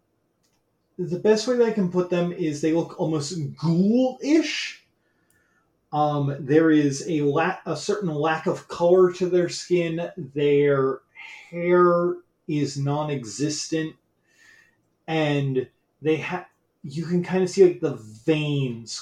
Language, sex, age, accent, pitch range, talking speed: English, male, 30-49, American, 140-180 Hz, 130 wpm